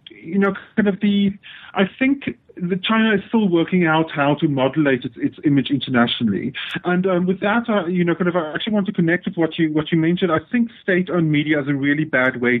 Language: English